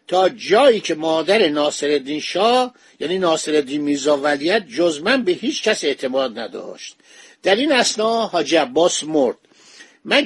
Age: 50-69